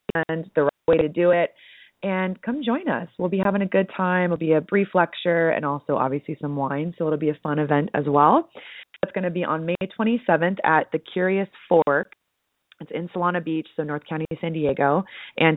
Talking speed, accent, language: 210 wpm, American, English